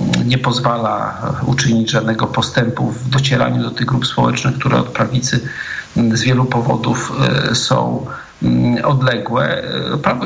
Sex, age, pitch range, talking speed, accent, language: male, 50-69, 120-140 Hz, 115 wpm, native, Polish